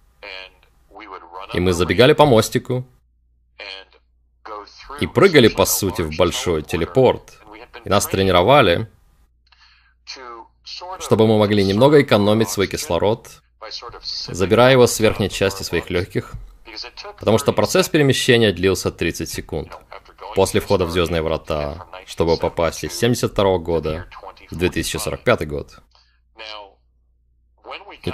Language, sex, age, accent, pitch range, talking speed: Russian, male, 30-49, native, 80-115 Hz, 105 wpm